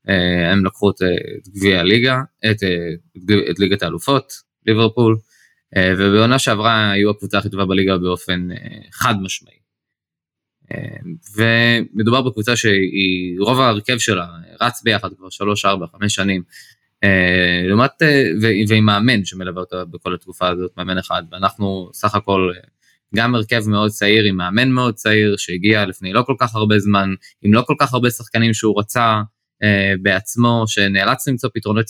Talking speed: 140 wpm